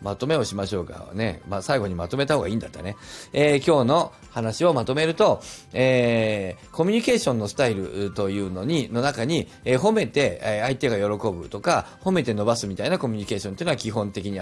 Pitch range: 105-170 Hz